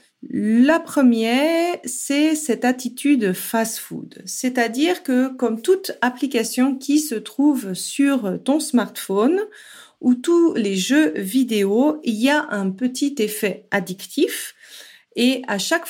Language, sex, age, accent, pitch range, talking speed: French, female, 40-59, French, 200-285 Hz, 120 wpm